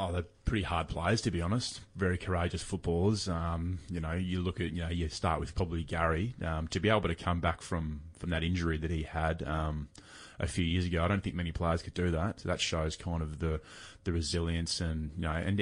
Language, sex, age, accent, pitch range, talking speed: English, male, 20-39, Australian, 80-90 Hz, 240 wpm